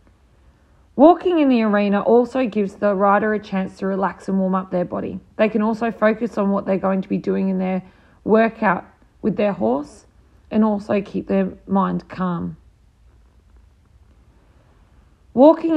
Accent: Australian